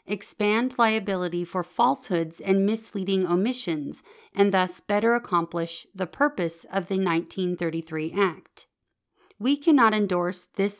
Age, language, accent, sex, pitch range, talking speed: 40-59, English, American, female, 170-210 Hz, 115 wpm